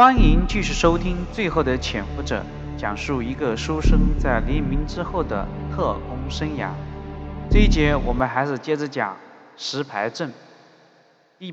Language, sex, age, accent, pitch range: Chinese, male, 20-39, native, 110-165 Hz